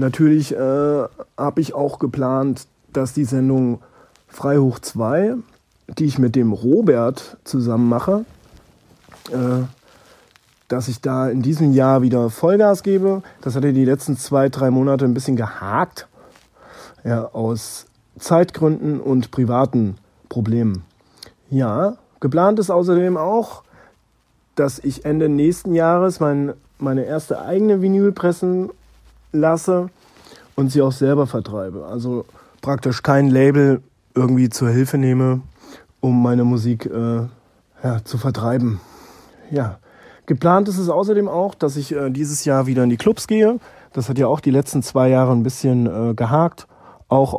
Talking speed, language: 135 wpm, German